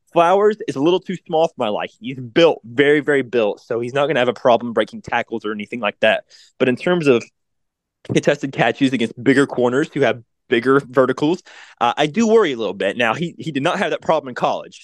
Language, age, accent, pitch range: English, 20-39, American, 120-155 Hz